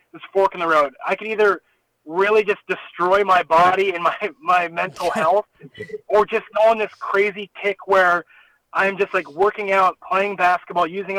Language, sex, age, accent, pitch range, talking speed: English, male, 20-39, American, 170-200 Hz, 180 wpm